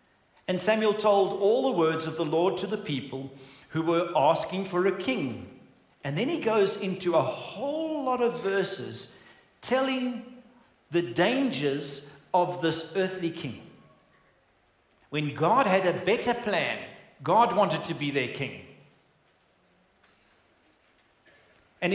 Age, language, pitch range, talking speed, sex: 50-69, English, 160-225 Hz, 130 wpm, male